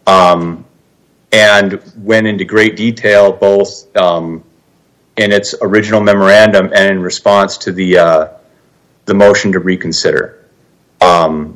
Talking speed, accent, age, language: 120 wpm, American, 40-59, English